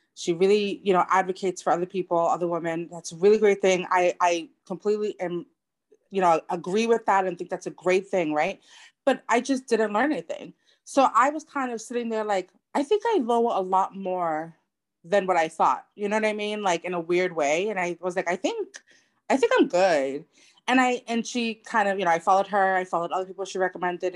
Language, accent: English, American